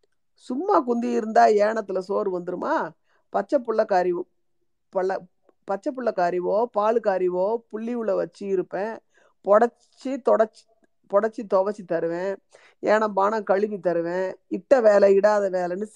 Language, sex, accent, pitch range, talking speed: Tamil, female, native, 190-240 Hz, 115 wpm